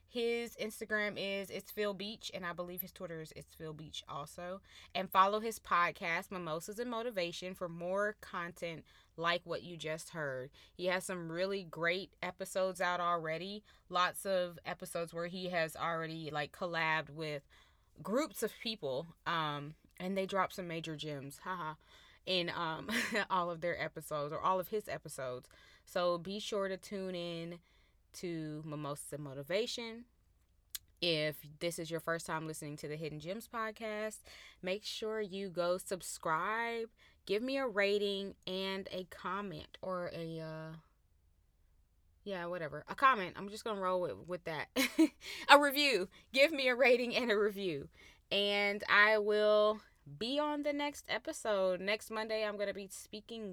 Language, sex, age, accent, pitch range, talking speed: English, female, 20-39, American, 165-210 Hz, 160 wpm